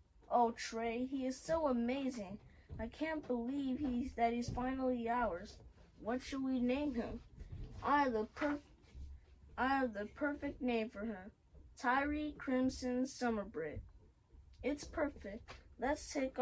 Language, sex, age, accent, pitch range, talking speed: English, female, 20-39, American, 205-260 Hz, 135 wpm